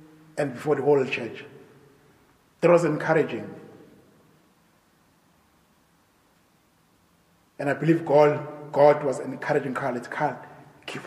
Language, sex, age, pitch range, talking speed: English, male, 30-49, 130-160 Hz, 100 wpm